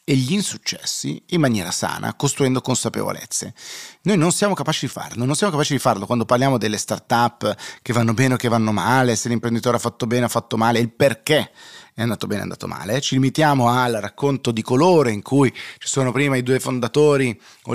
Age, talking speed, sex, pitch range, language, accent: 30-49, 215 wpm, male, 105-135 Hz, Italian, native